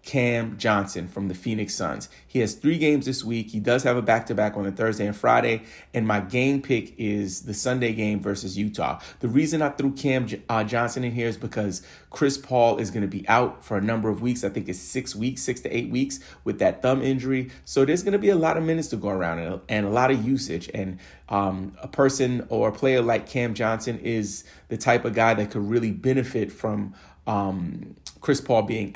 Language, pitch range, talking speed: English, 100-130 Hz, 230 wpm